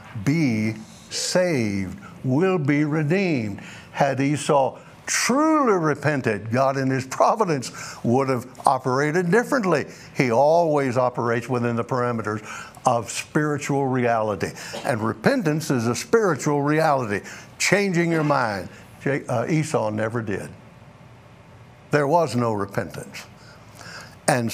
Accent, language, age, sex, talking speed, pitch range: American, English, 60-79, male, 105 wpm, 115-150 Hz